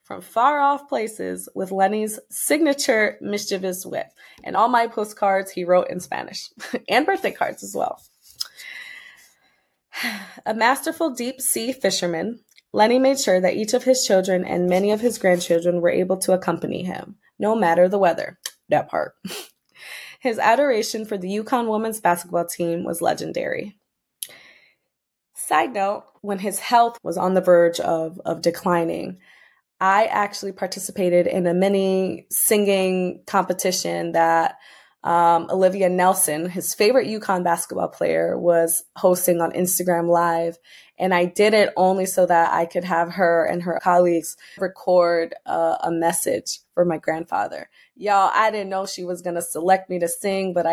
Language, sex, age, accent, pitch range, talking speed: English, female, 20-39, American, 170-205 Hz, 155 wpm